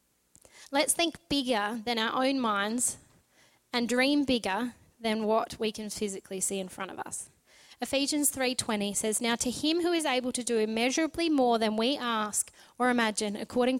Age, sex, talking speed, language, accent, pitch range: 10-29, female, 170 wpm, English, Australian, 210-250 Hz